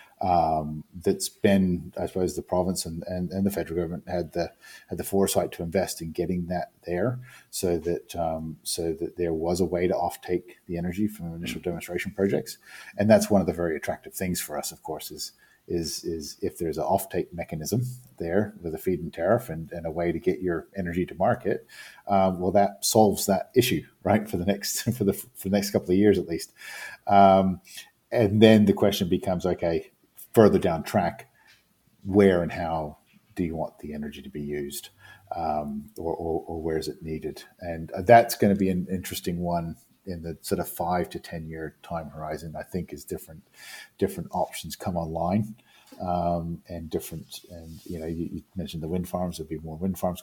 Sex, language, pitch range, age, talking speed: male, English, 85-95 Hz, 40-59, 200 wpm